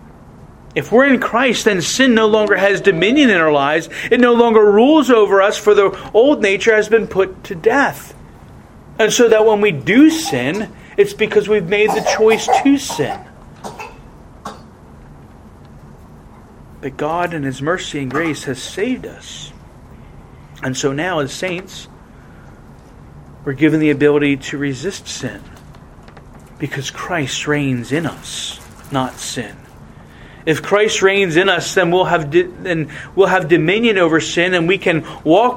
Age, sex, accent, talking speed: 40-59, male, American, 155 wpm